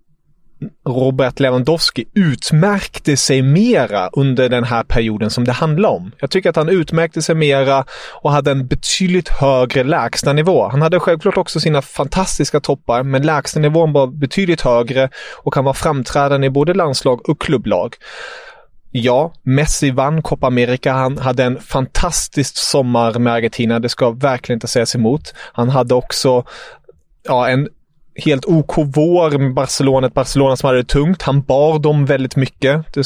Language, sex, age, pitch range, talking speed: English, male, 30-49, 125-155 Hz, 150 wpm